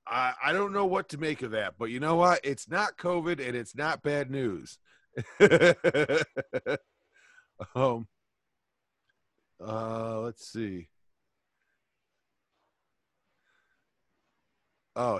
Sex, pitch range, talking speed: male, 120-165 Hz, 105 wpm